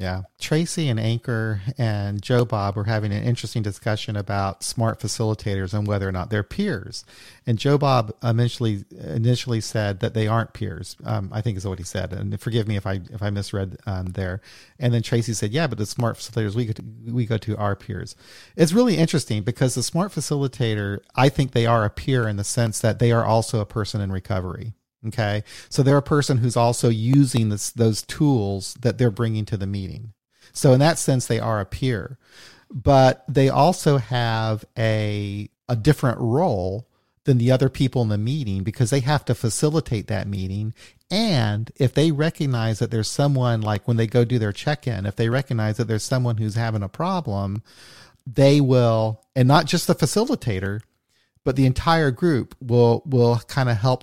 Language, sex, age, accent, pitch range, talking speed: English, male, 40-59, American, 110-135 Hz, 195 wpm